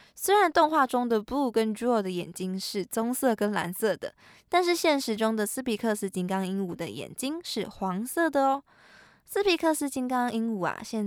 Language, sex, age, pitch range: Chinese, female, 20-39, 200-275 Hz